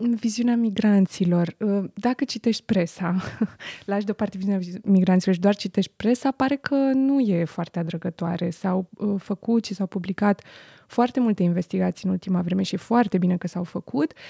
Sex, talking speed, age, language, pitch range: female, 155 wpm, 20-39, Romanian, 180-225 Hz